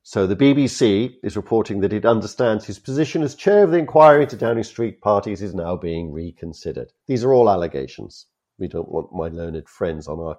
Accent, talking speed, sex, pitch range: British, 200 wpm, male, 90-130 Hz